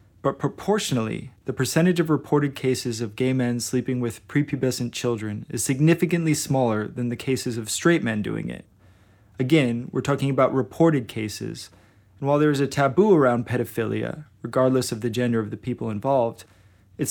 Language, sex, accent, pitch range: English, male, American, 115-140 Hz